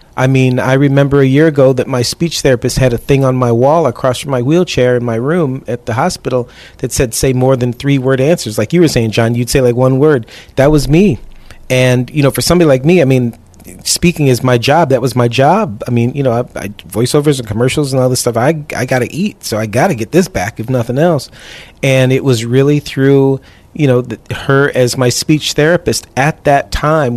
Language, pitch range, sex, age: English, 120-145 Hz, male, 40-59